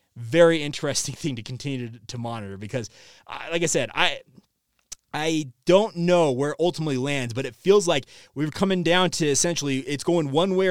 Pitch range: 130-170 Hz